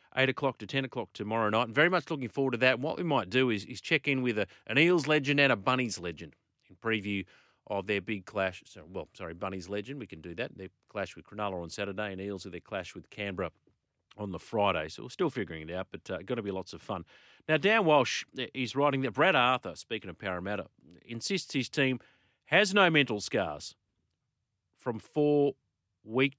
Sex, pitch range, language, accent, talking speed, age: male, 100-130 Hz, English, Australian, 225 wpm, 40-59